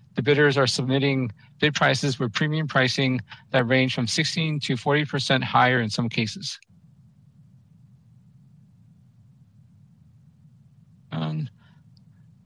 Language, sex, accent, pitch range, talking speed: English, male, American, 130-150 Hz, 100 wpm